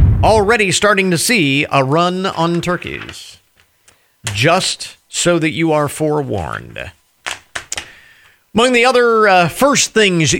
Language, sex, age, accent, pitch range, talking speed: English, male, 40-59, American, 135-195 Hz, 115 wpm